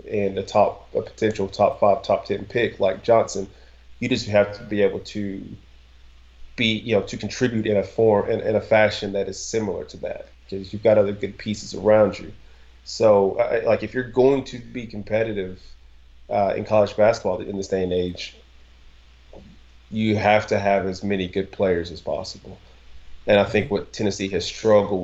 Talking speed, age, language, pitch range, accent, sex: 185 wpm, 30-49, English, 65-105 Hz, American, male